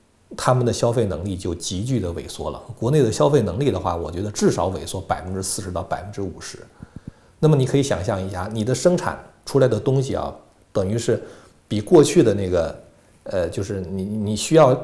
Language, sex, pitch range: Chinese, male, 90-120 Hz